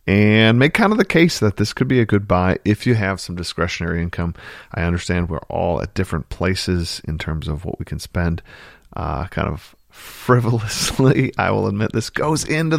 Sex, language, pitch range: male, English, 85-110 Hz